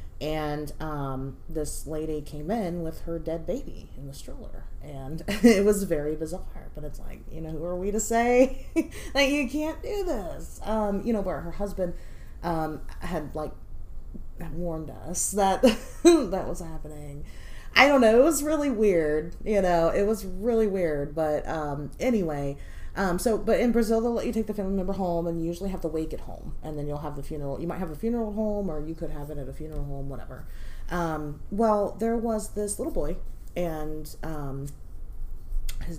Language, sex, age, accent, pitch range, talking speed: English, female, 30-49, American, 150-215 Hz, 195 wpm